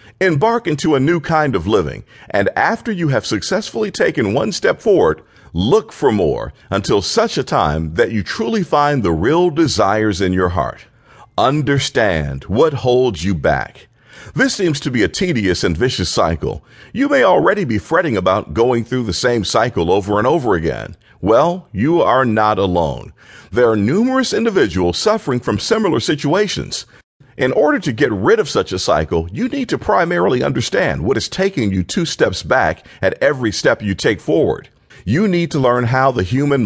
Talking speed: 180 wpm